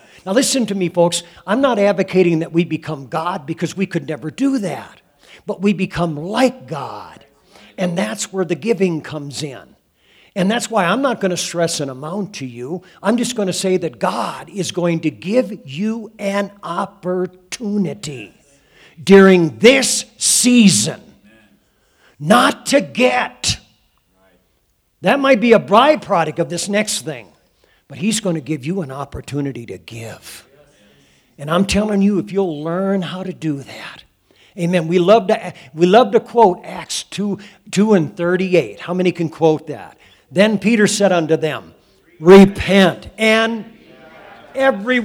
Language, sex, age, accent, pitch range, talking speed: English, male, 50-69, American, 160-210 Hz, 155 wpm